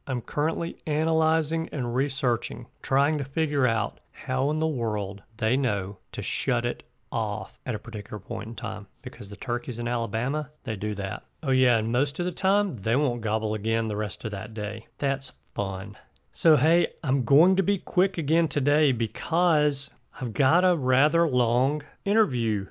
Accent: American